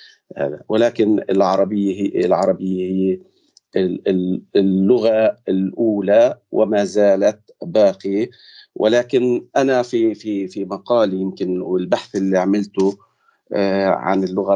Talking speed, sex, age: 95 wpm, male, 40-59